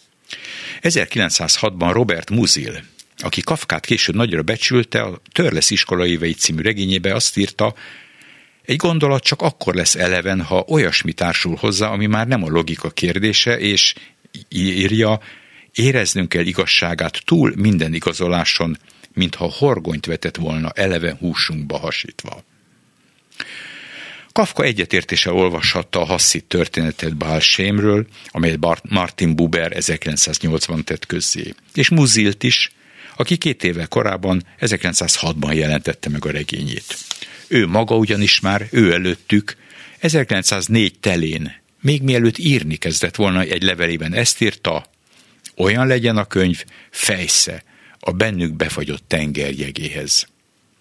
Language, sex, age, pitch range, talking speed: Hungarian, male, 60-79, 85-110 Hz, 115 wpm